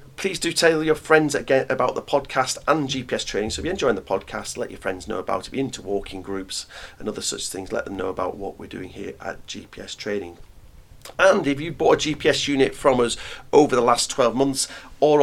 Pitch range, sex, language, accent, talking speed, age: 100-140 Hz, male, English, British, 235 wpm, 40-59